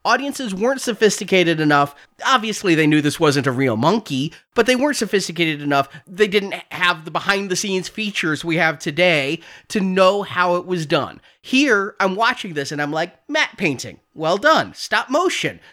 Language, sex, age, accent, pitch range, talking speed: English, male, 30-49, American, 165-240 Hz, 175 wpm